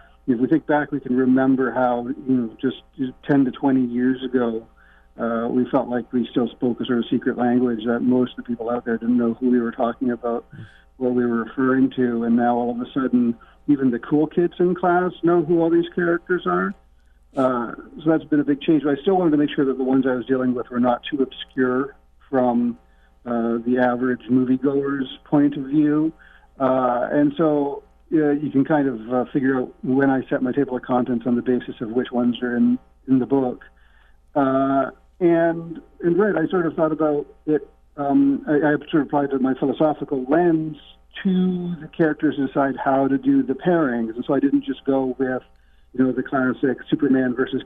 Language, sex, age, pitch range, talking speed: English, male, 50-69, 120-145 Hz, 210 wpm